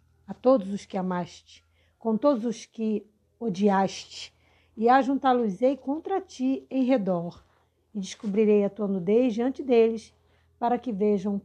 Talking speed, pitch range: 135 wpm, 205-260 Hz